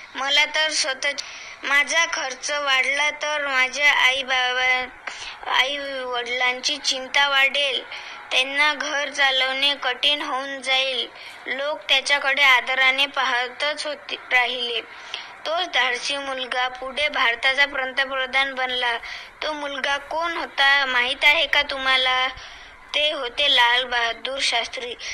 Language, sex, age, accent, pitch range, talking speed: Marathi, female, 20-39, native, 260-295 Hz, 80 wpm